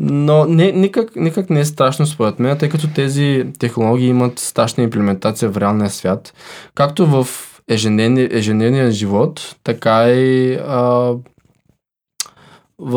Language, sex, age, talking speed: Bulgarian, male, 20-39, 130 wpm